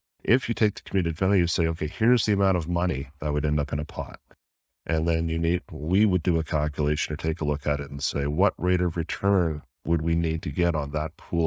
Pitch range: 80-100 Hz